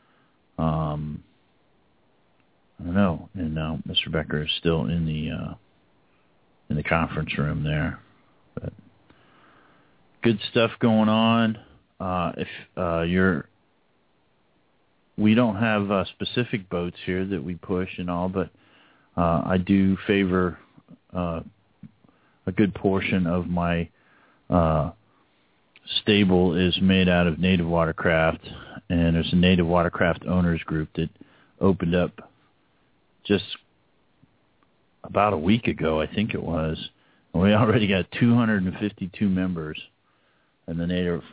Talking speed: 125 wpm